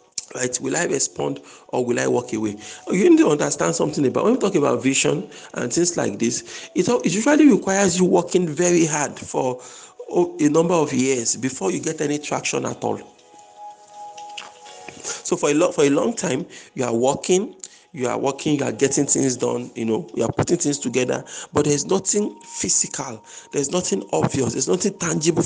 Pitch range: 135-195 Hz